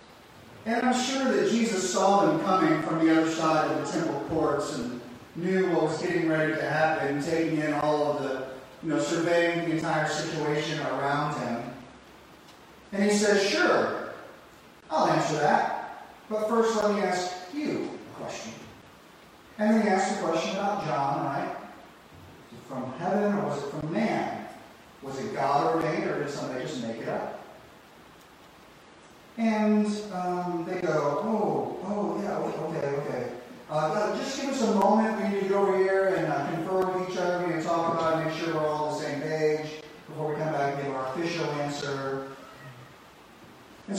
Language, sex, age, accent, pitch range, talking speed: English, male, 30-49, American, 145-195 Hz, 180 wpm